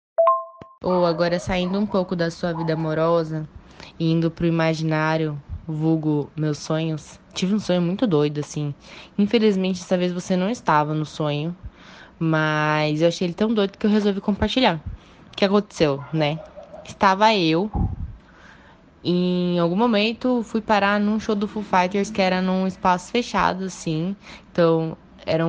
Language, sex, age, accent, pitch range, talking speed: Portuguese, female, 10-29, Brazilian, 165-210 Hz, 150 wpm